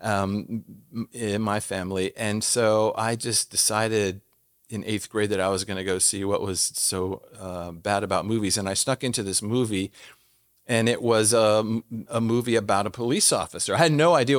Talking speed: 190 wpm